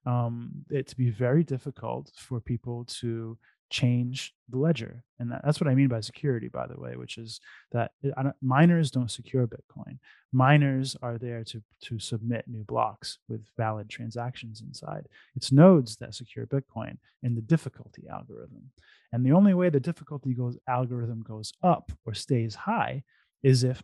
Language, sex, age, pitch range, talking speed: English, male, 20-39, 115-135 Hz, 175 wpm